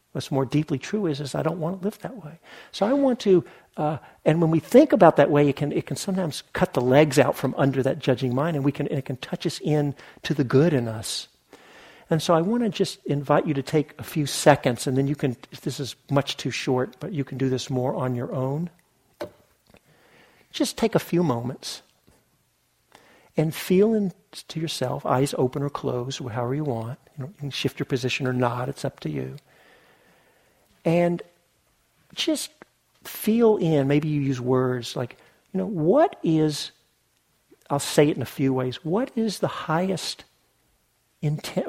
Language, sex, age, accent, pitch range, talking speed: English, male, 50-69, American, 135-175 Hz, 200 wpm